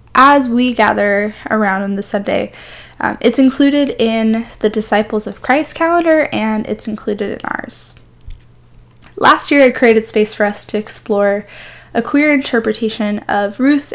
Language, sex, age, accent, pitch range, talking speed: English, female, 10-29, American, 210-250 Hz, 150 wpm